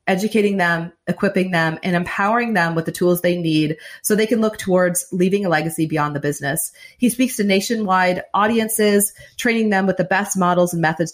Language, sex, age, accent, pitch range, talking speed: English, female, 30-49, American, 170-215 Hz, 195 wpm